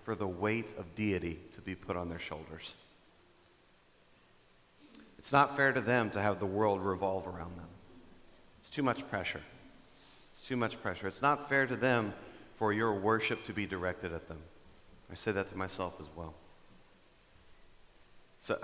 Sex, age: male, 40-59